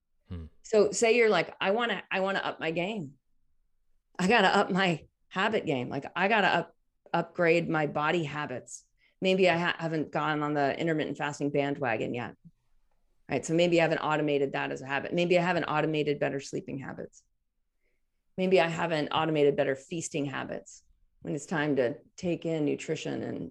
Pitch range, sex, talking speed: 150-195 Hz, female, 185 wpm